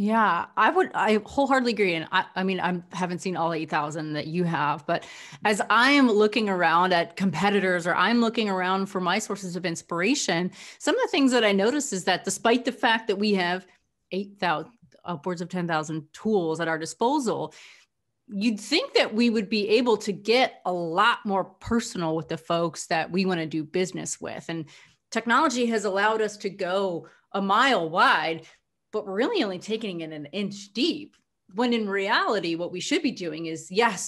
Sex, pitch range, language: female, 165-215 Hz, English